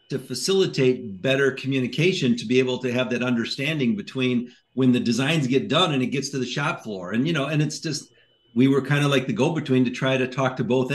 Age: 50-69